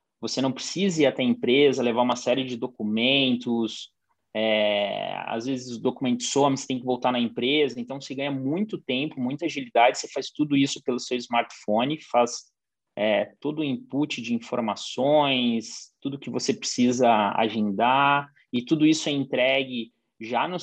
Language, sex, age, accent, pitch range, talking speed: Portuguese, male, 20-39, Brazilian, 120-150 Hz, 165 wpm